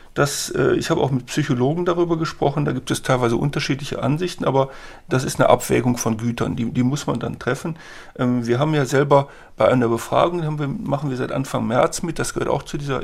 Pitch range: 120-145 Hz